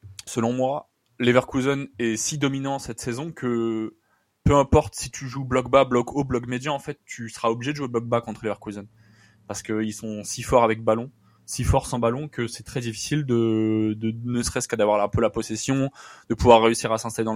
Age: 20-39